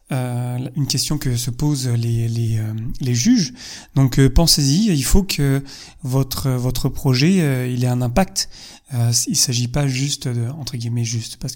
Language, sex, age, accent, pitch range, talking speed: French, male, 30-49, French, 130-155 Hz, 180 wpm